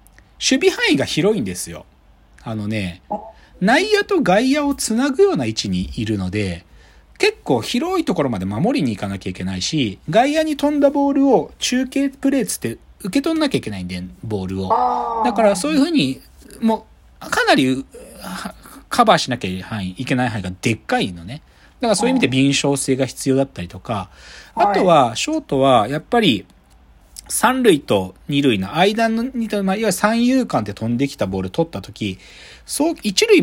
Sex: male